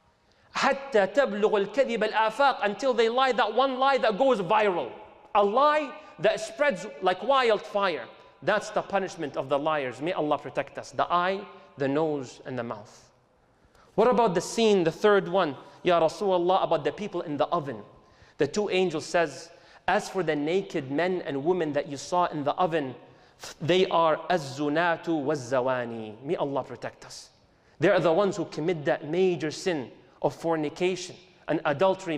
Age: 30-49